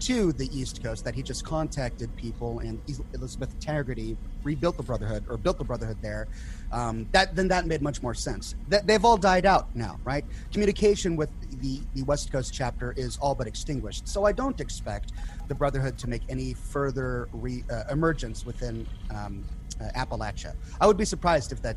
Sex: male